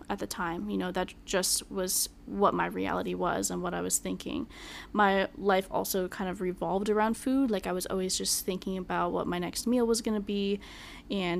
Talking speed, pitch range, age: 215 wpm, 185-215 Hz, 10-29